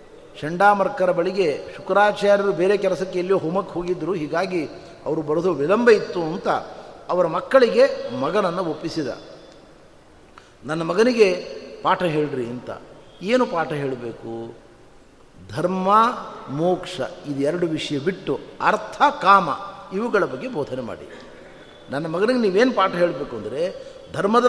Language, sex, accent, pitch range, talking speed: Kannada, male, native, 175-235 Hz, 110 wpm